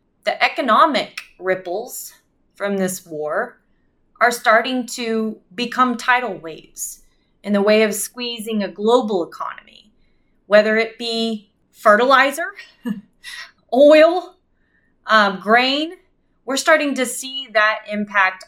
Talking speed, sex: 105 wpm, female